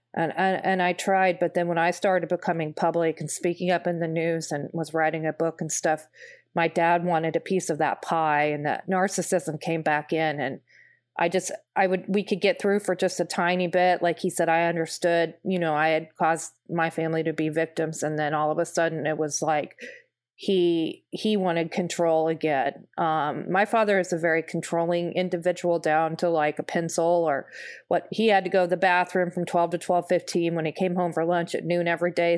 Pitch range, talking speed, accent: 160-185 Hz, 220 wpm, American